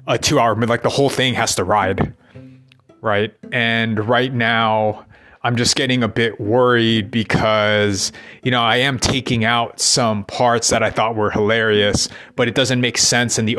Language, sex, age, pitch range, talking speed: English, male, 30-49, 110-125 Hz, 180 wpm